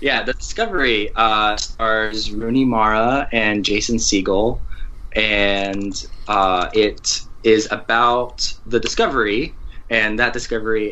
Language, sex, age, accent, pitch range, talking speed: English, male, 20-39, American, 95-115 Hz, 110 wpm